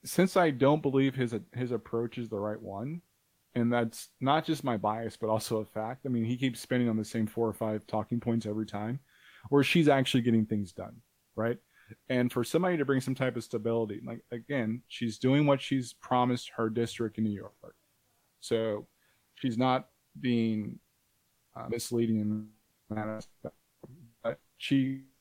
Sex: male